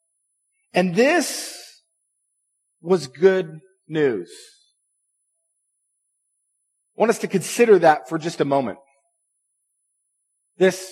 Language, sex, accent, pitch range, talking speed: English, male, American, 155-260 Hz, 90 wpm